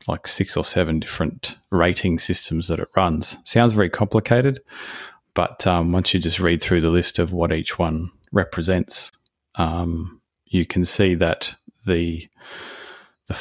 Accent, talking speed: Australian, 150 wpm